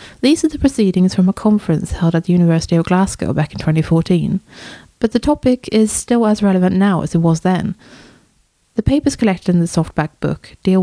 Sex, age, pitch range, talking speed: female, 20-39, 160-200 Hz, 200 wpm